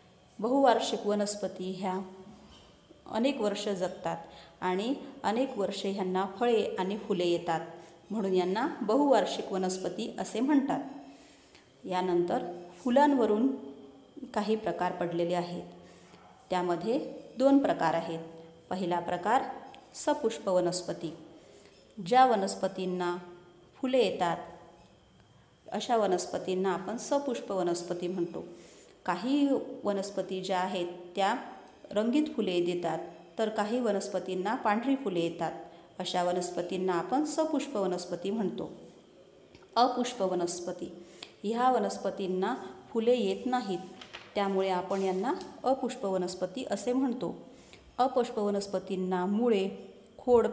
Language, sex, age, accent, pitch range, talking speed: Marathi, female, 30-49, native, 180-235 Hz, 90 wpm